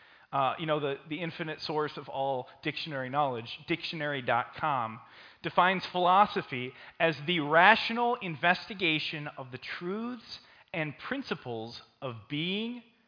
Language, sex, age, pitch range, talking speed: English, male, 30-49, 135-195 Hz, 115 wpm